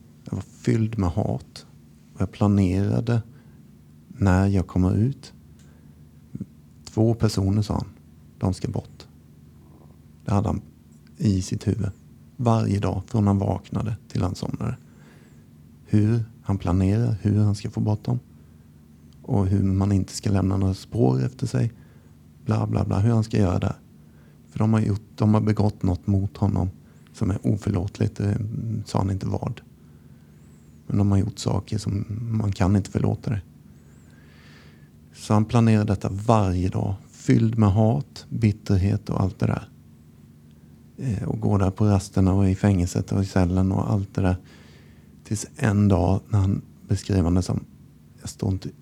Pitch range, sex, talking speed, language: 75-110 Hz, male, 155 wpm, Swedish